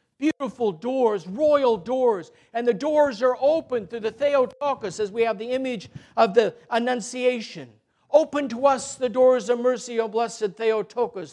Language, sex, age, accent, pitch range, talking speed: English, male, 50-69, American, 225-270 Hz, 160 wpm